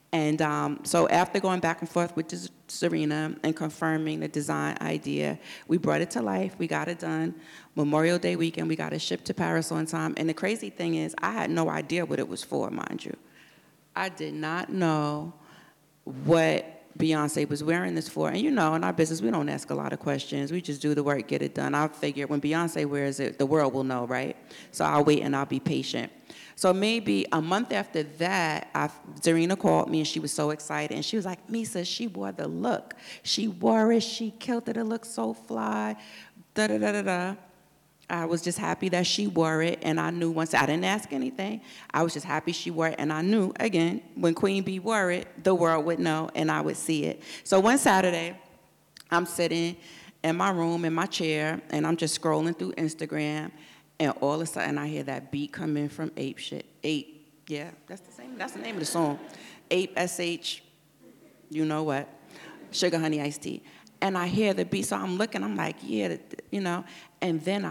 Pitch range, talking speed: 150-175 Hz, 215 wpm